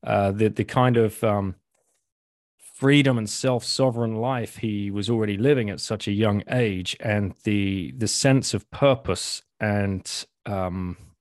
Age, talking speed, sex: 30-49, 150 wpm, male